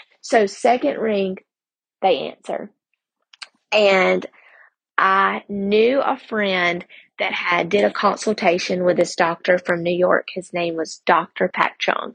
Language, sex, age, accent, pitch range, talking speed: English, female, 20-39, American, 175-220 Hz, 135 wpm